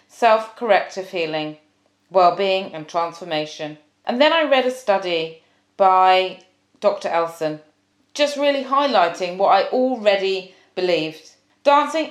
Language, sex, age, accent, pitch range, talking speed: English, female, 30-49, British, 170-250 Hz, 110 wpm